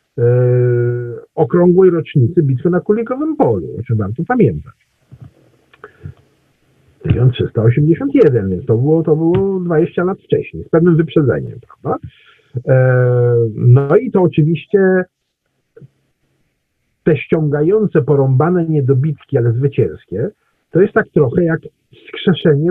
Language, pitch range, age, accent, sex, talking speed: Polish, 125-175 Hz, 50-69, native, male, 110 wpm